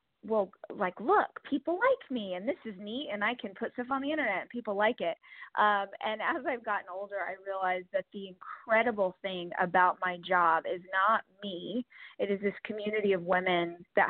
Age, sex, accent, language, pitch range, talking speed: 20-39, female, American, English, 195-240 Hz, 200 wpm